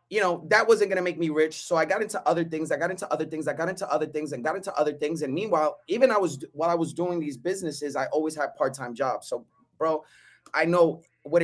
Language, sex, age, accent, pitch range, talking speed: English, male, 20-39, American, 145-175 Hz, 260 wpm